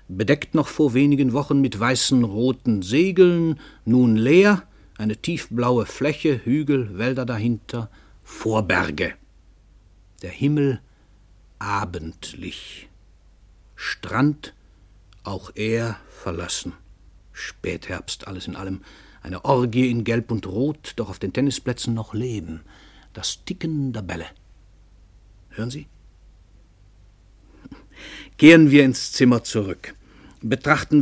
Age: 60-79